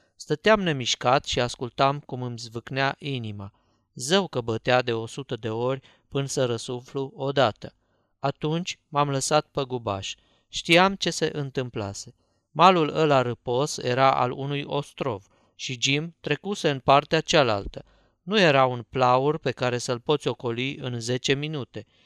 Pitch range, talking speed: 125-150 Hz, 145 wpm